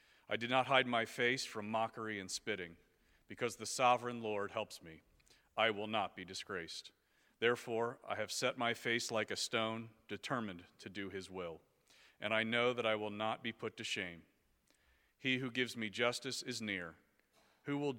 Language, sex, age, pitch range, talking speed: English, male, 40-59, 105-125 Hz, 185 wpm